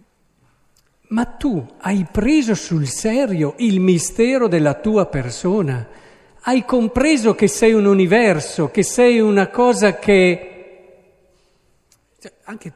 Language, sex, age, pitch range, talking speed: Italian, male, 50-69, 135-215 Hz, 110 wpm